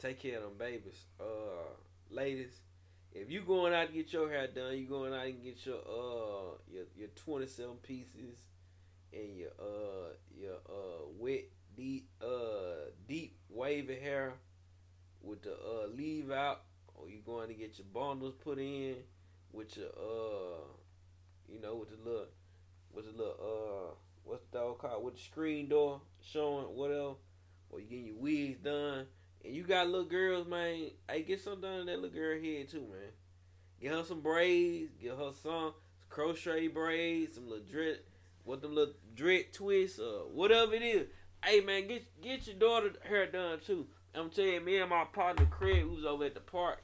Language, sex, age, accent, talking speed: English, male, 20-39, American, 180 wpm